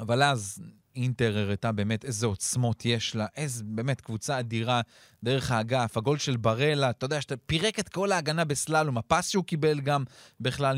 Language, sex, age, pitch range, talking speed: Hebrew, male, 30-49, 115-150 Hz, 175 wpm